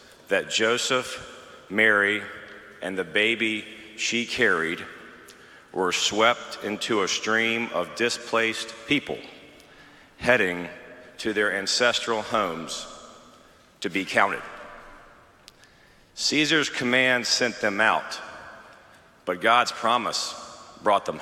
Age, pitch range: 40-59, 105-130 Hz